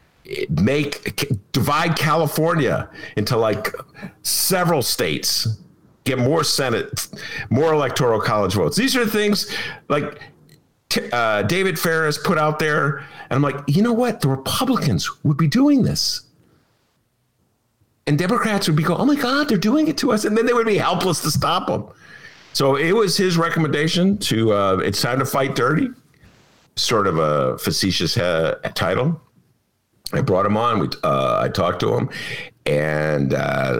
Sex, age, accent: male, 50-69, American